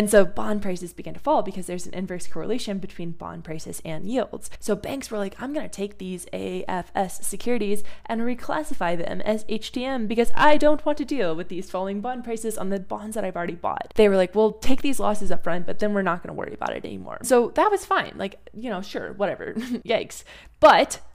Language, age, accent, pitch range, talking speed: English, 20-39, American, 175-230 Hz, 230 wpm